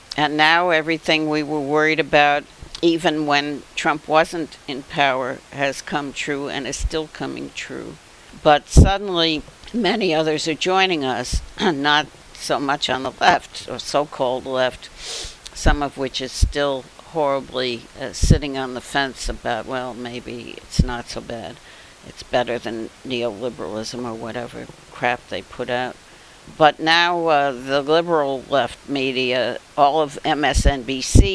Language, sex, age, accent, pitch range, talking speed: English, female, 60-79, American, 130-155 Hz, 145 wpm